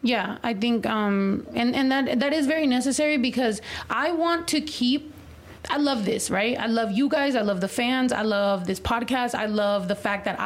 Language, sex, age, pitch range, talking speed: English, female, 30-49, 205-255 Hz, 210 wpm